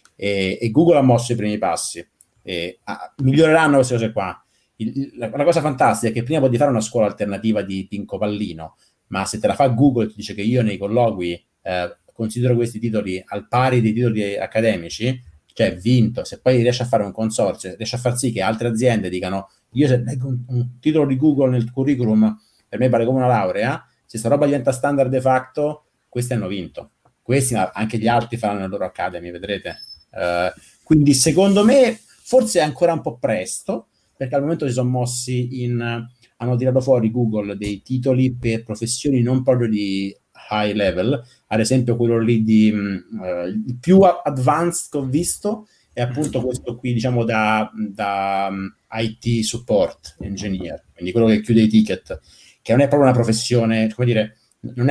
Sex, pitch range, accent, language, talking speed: male, 110-130 Hz, native, Italian, 185 wpm